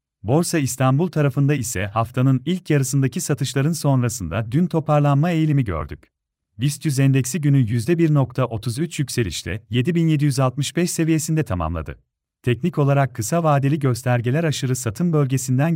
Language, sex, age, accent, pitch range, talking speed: Turkish, male, 40-59, native, 120-155 Hz, 110 wpm